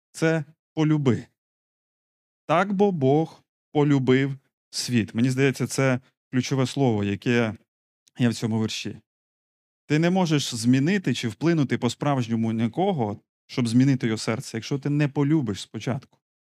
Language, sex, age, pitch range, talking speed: Ukrainian, male, 30-49, 120-145 Hz, 130 wpm